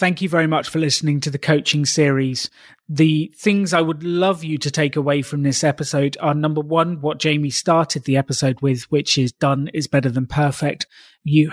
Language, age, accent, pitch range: English, 30-49, British, 140-160 Hz